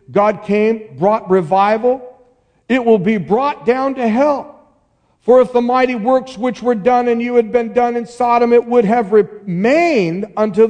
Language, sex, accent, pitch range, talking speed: English, male, American, 205-255 Hz, 175 wpm